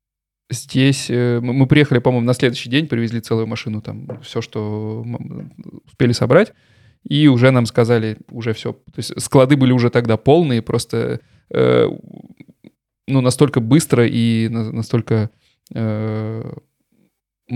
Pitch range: 115-130 Hz